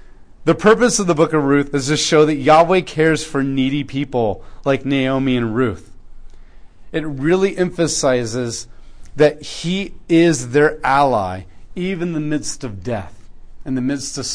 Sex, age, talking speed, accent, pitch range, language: male, 40-59, 160 wpm, American, 115-145 Hz, English